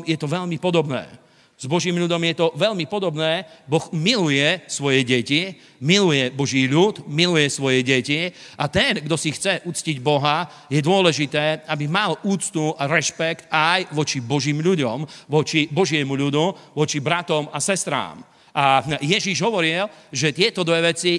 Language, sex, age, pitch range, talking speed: Slovak, male, 40-59, 150-180 Hz, 150 wpm